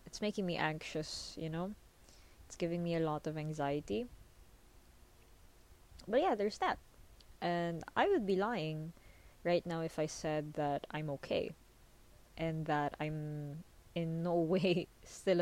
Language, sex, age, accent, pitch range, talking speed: English, female, 20-39, Filipino, 150-185 Hz, 145 wpm